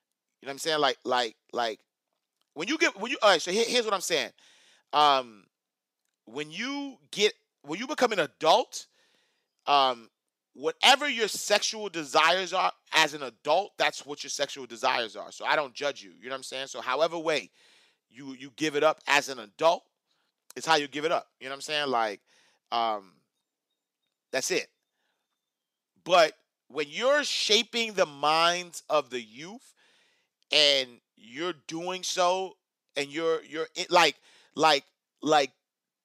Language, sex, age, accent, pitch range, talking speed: English, male, 30-49, American, 140-230 Hz, 165 wpm